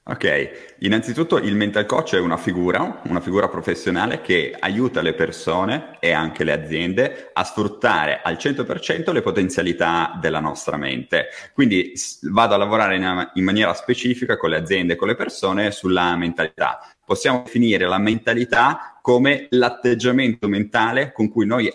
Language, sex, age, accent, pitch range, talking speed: Italian, male, 30-49, native, 95-125 Hz, 150 wpm